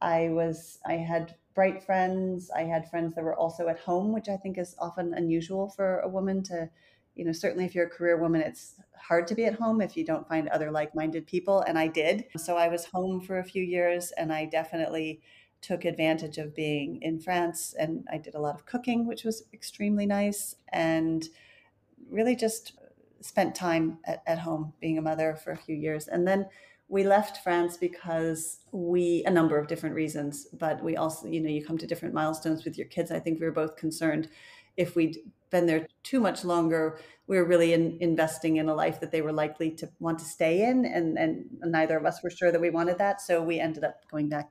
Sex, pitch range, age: female, 160-180 Hz, 40-59